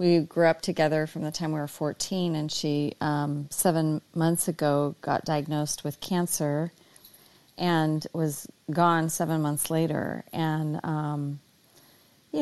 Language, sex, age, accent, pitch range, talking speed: English, female, 40-59, American, 150-175 Hz, 140 wpm